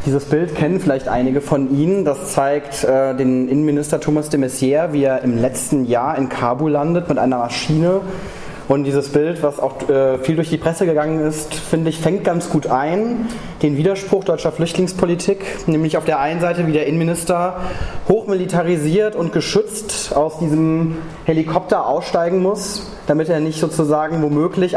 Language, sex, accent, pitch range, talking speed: German, male, German, 150-185 Hz, 165 wpm